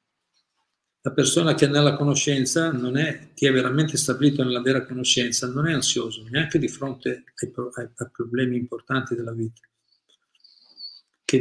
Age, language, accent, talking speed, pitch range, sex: 50-69, Italian, native, 145 wpm, 125-150 Hz, male